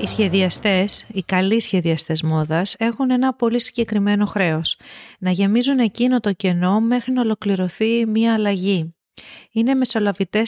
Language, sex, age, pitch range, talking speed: Greek, female, 30-49, 185-245 Hz, 130 wpm